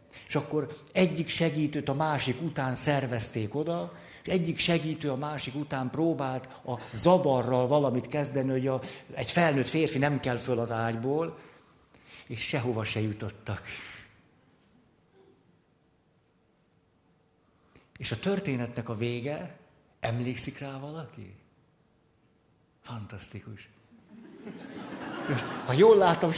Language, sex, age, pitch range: Hungarian, male, 60-79, 120-155 Hz